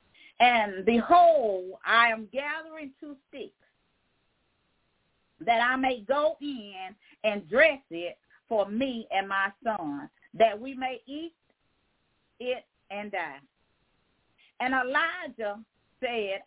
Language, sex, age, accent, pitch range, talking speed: English, female, 40-59, American, 225-300 Hz, 110 wpm